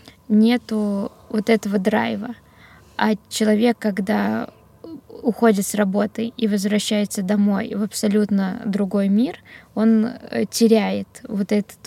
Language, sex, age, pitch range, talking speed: Russian, female, 20-39, 205-230 Hz, 105 wpm